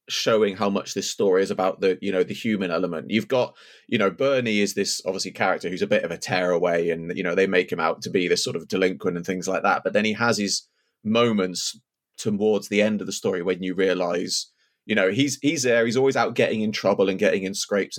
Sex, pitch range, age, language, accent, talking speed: male, 95-115 Hz, 30-49, English, British, 255 wpm